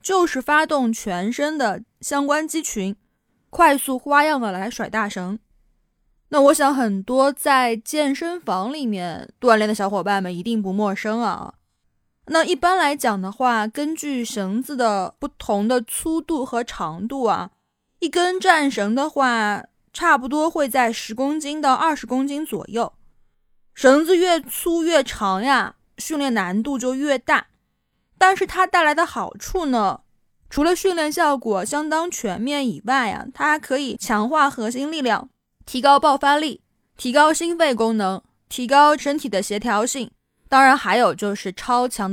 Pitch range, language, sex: 220-300 Hz, Chinese, female